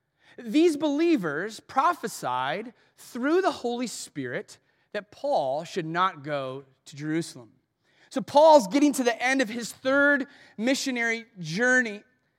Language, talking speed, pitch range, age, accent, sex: English, 120 wpm, 200-280 Hz, 30-49, American, male